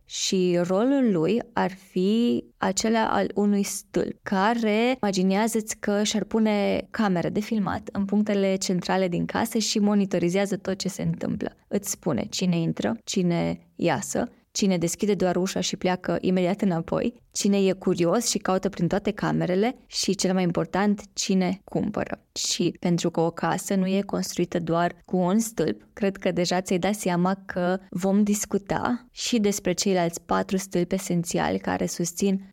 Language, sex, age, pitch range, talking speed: Romanian, female, 20-39, 180-210 Hz, 160 wpm